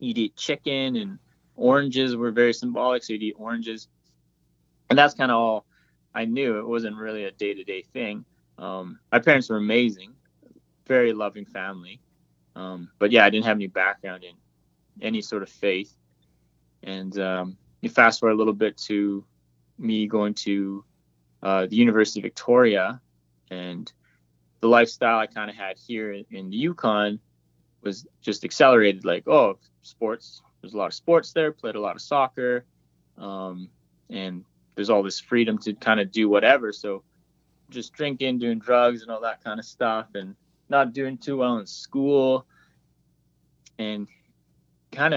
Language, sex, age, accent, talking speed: English, male, 20-39, American, 165 wpm